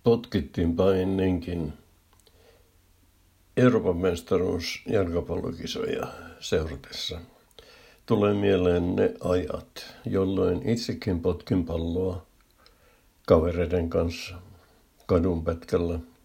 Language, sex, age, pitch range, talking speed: Finnish, male, 60-79, 85-95 Hz, 65 wpm